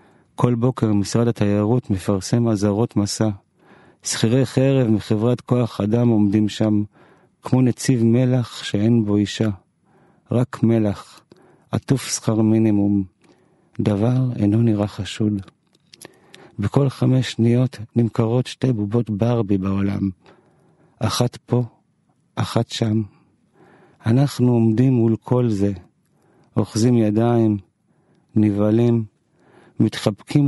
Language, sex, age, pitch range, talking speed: Hebrew, male, 50-69, 105-125 Hz, 100 wpm